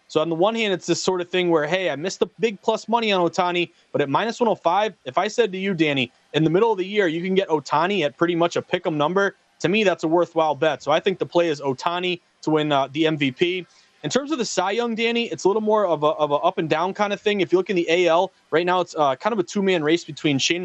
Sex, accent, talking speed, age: male, American, 295 wpm, 30-49